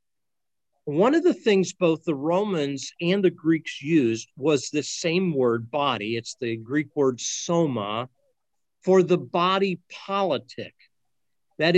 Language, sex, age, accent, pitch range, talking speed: English, male, 50-69, American, 130-180 Hz, 130 wpm